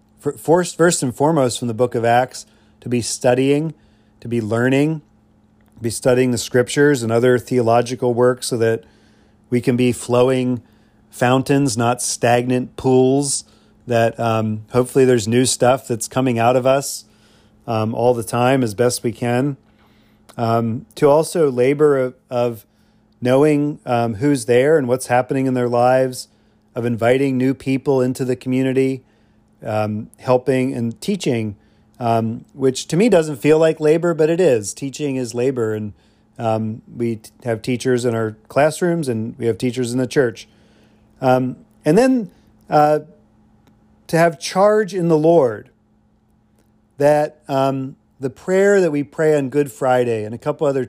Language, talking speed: English, 155 wpm